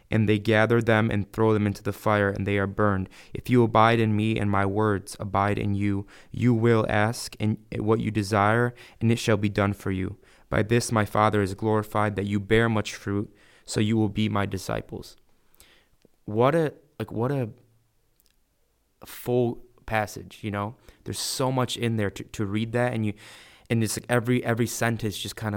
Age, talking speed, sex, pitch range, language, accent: 20-39, 200 wpm, male, 105-115 Hz, English, American